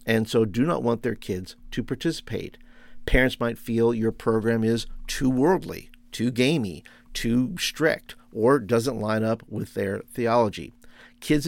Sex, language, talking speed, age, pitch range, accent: male, English, 150 wpm, 50-69, 105-125 Hz, American